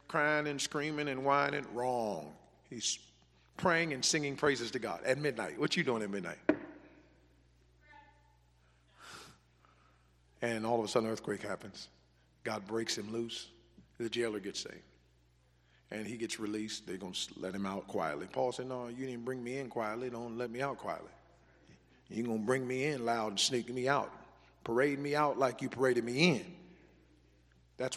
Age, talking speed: 50-69, 175 wpm